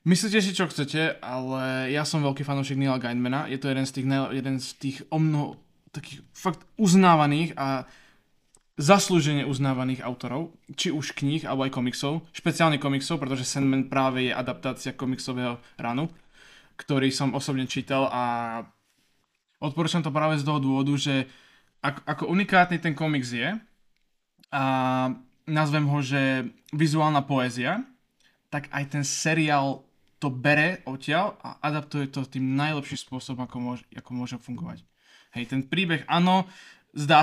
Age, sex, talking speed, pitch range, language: 20-39, male, 140 wpm, 130-150 Hz, Slovak